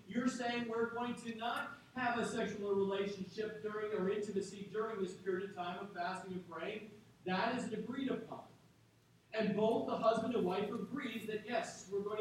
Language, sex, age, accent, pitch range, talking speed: English, male, 40-59, American, 205-250 Hz, 180 wpm